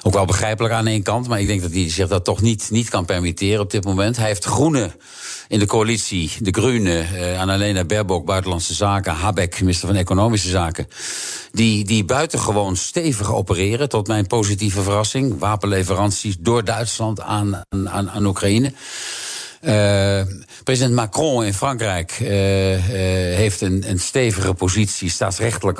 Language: Dutch